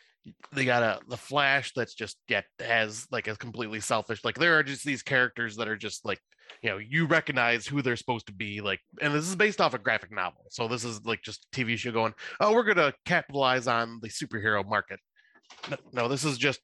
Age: 20-39